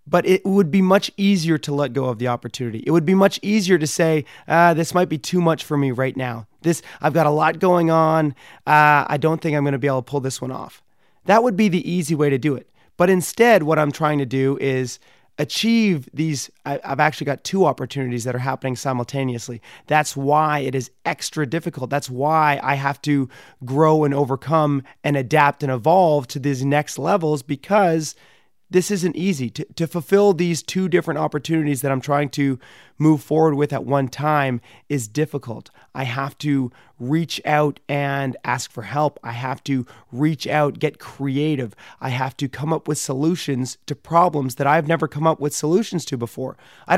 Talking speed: 205 wpm